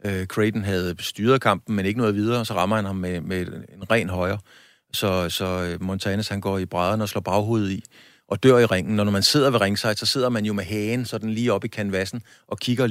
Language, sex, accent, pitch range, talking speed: Danish, male, native, 95-110 Hz, 240 wpm